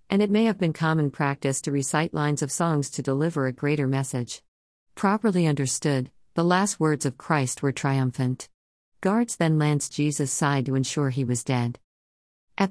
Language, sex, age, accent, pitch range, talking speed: Malayalam, female, 50-69, American, 130-160 Hz, 175 wpm